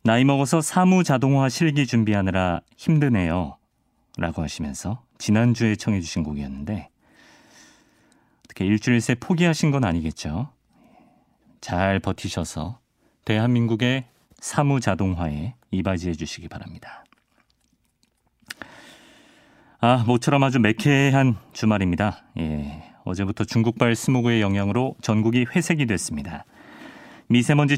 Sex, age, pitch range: male, 40-59, 100-140 Hz